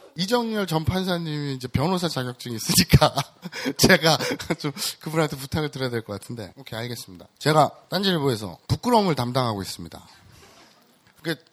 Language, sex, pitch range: Korean, male, 110-160 Hz